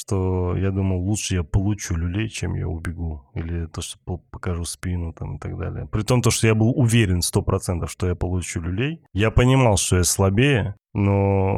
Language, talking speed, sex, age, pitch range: Russian, 190 wpm, male, 20-39, 90-110 Hz